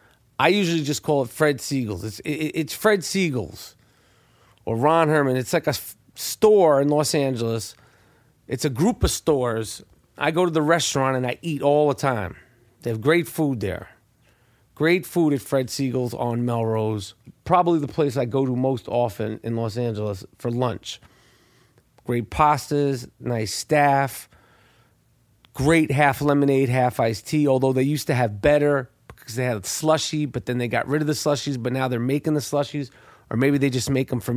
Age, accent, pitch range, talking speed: 40-59, American, 120-150 Hz, 180 wpm